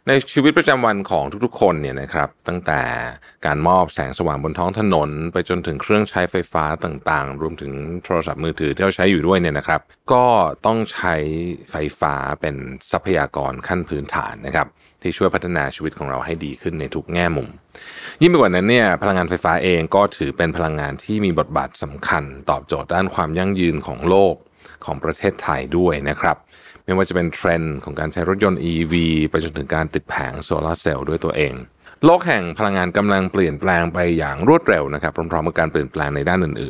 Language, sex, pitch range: Thai, male, 80-95 Hz